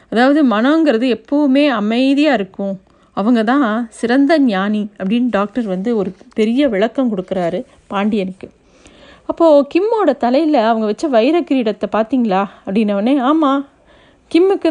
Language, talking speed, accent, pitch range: Tamil, 110 wpm, native, 205-270 Hz